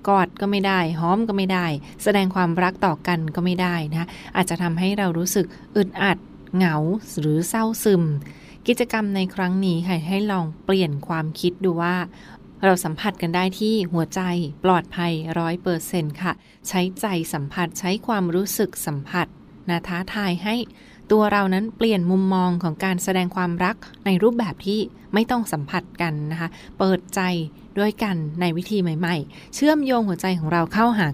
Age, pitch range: 20-39, 175-205 Hz